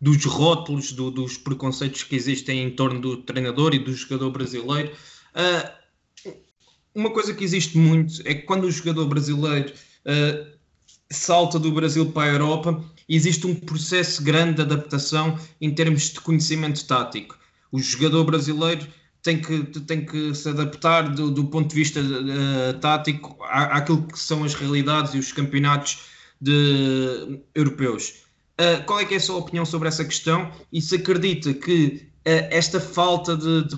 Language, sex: Portuguese, male